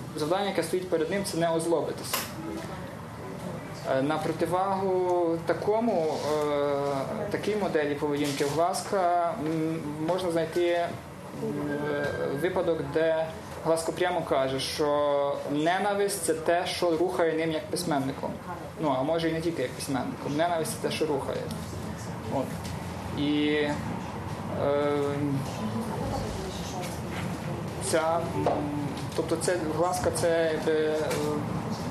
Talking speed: 90 wpm